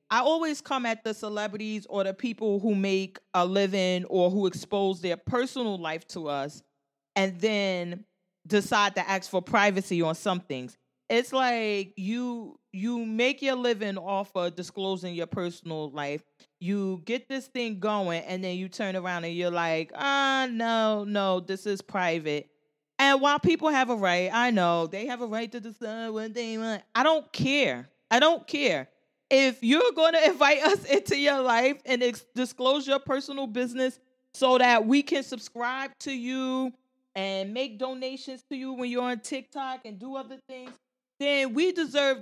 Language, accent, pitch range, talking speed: English, American, 190-260 Hz, 175 wpm